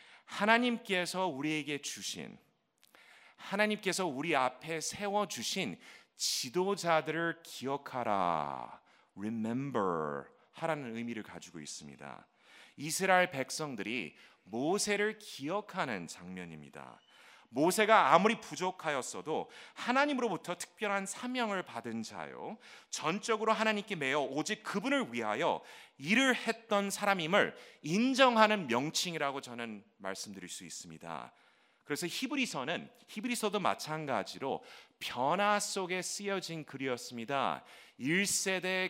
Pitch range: 140-205 Hz